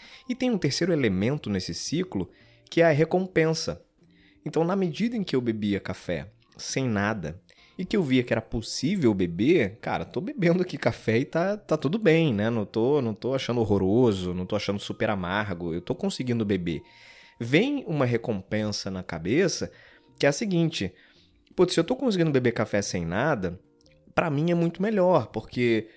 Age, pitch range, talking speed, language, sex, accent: 20-39, 100-145 Hz, 185 wpm, Portuguese, male, Brazilian